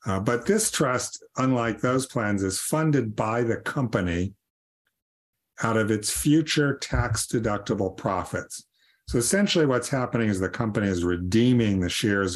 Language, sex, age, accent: English, male, 50-69, American